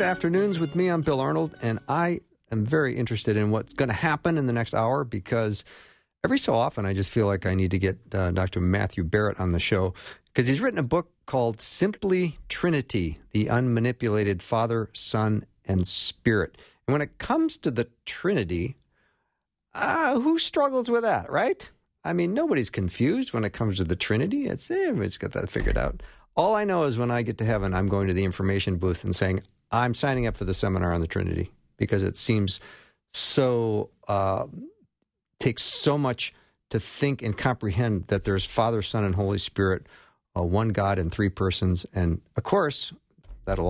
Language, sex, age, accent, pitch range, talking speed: English, male, 50-69, American, 95-125 Hz, 190 wpm